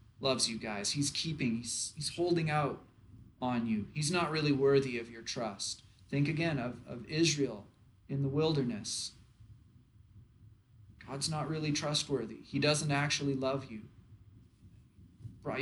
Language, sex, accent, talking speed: English, male, American, 140 wpm